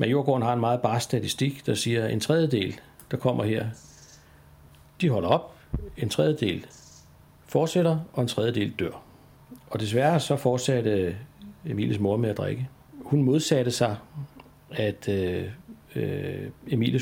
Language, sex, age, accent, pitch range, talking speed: Danish, male, 60-79, native, 105-135 Hz, 135 wpm